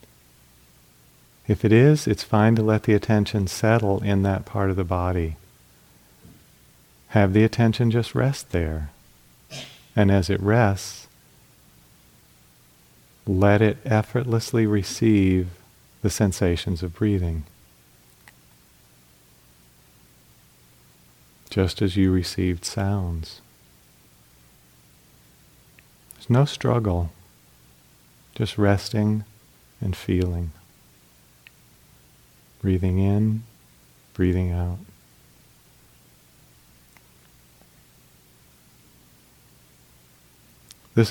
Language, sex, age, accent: English, male, 40-59, American